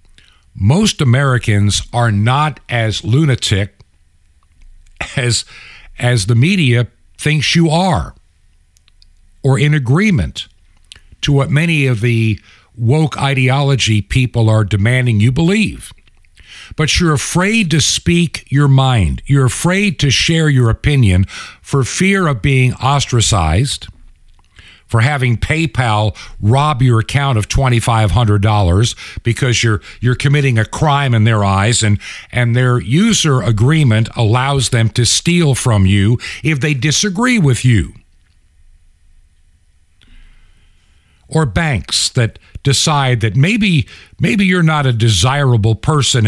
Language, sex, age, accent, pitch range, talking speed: English, male, 60-79, American, 95-140 Hz, 120 wpm